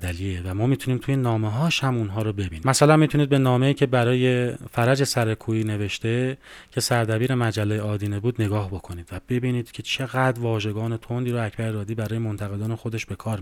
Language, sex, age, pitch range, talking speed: Persian, male, 30-49, 110-130 Hz, 185 wpm